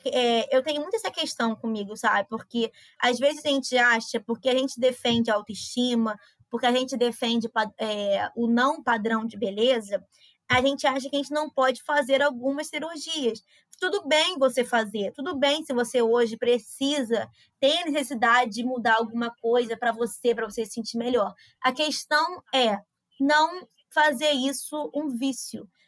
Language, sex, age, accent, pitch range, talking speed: Portuguese, female, 20-39, Brazilian, 235-290 Hz, 170 wpm